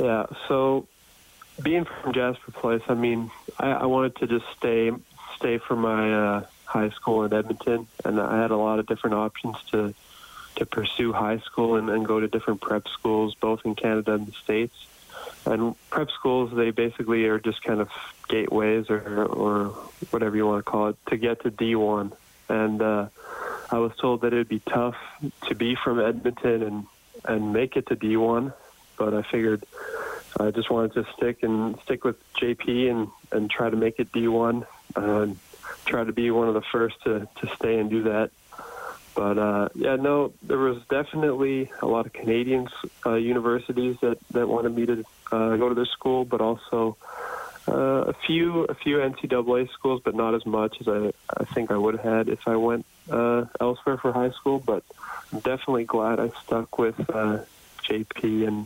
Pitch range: 110-120 Hz